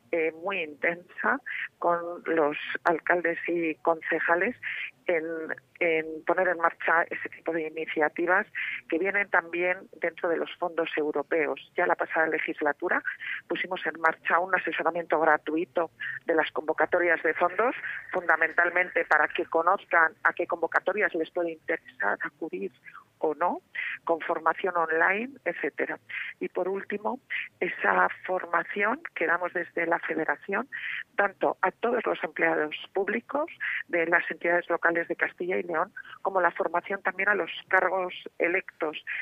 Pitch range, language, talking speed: 165-185 Hz, Spanish, 135 wpm